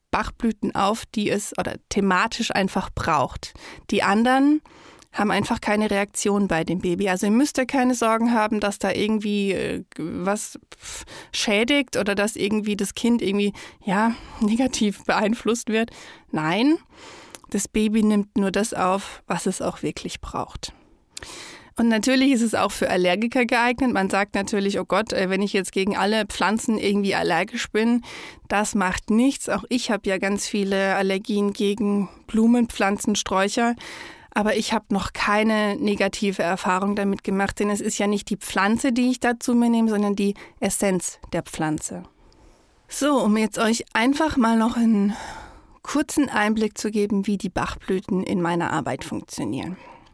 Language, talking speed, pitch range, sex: German, 160 wpm, 195-230 Hz, female